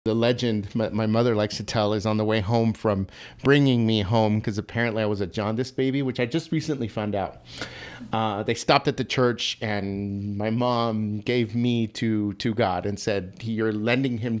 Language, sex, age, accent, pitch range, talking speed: English, male, 30-49, American, 110-130 Hz, 200 wpm